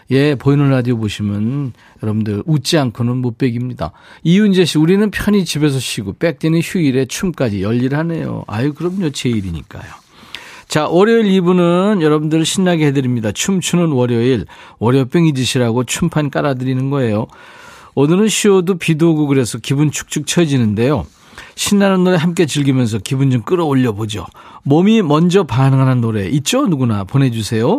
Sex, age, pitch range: male, 40-59, 125-170 Hz